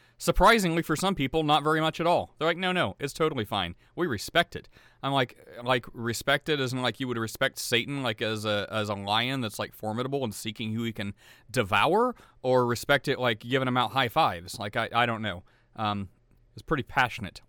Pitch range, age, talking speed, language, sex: 110-135 Hz, 40-59, 215 wpm, English, male